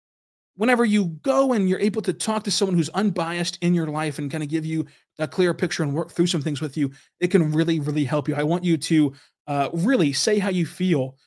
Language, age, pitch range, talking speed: English, 20-39, 145-170 Hz, 245 wpm